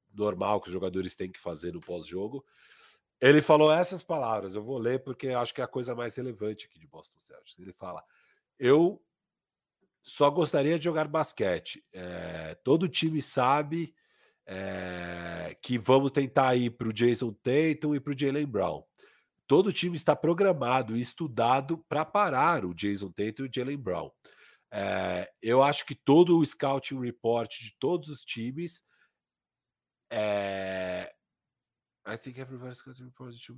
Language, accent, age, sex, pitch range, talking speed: Portuguese, Brazilian, 40-59, male, 110-155 Hz, 145 wpm